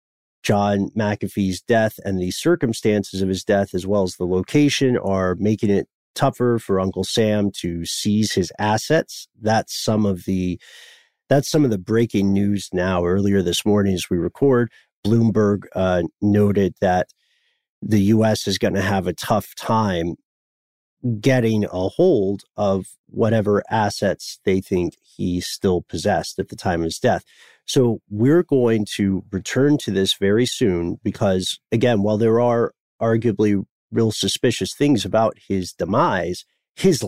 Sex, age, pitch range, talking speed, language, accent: male, 40-59, 95-115 Hz, 150 wpm, English, American